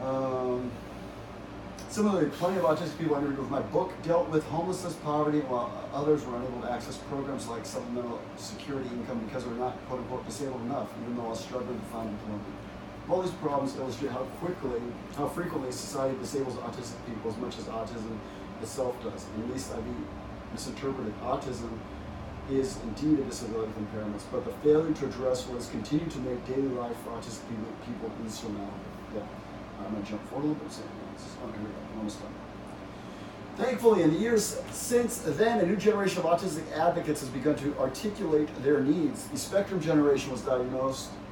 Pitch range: 110-150 Hz